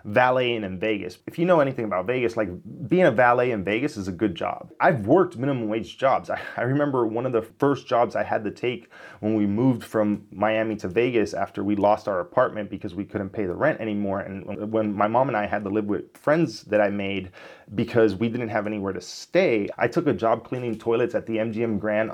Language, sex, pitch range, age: English, male, 105-120 Hz, 30-49